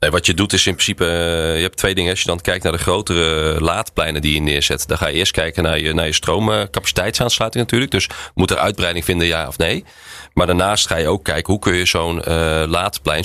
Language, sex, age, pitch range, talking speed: Dutch, male, 30-49, 85-100 Hz, 225 wpm